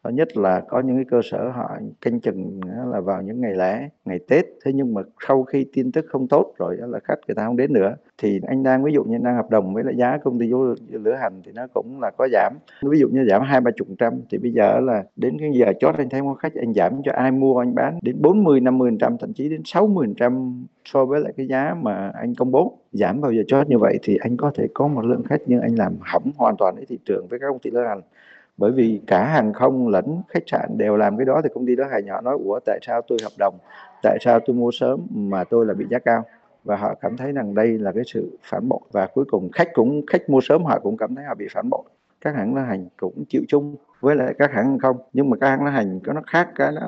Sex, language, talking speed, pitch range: male, Vietnamese, 275 wpm, 120-145 Hz